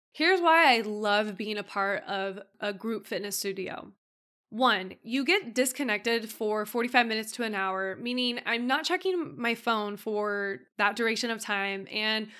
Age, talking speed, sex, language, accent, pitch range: 20-39, 165 wpm, female, English, American, 210-245 Hz